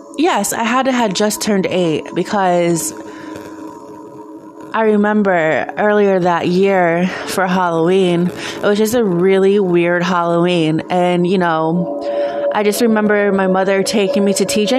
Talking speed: 140 wpm